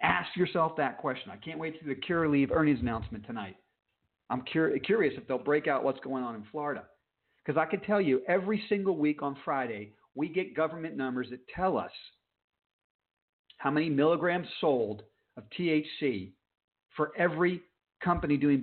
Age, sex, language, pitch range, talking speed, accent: 50-69, male, English, 130-180 Hz, 170 wpm, American